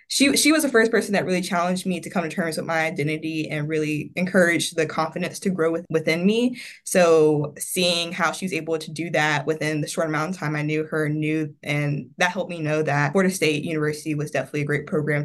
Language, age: English, 20-39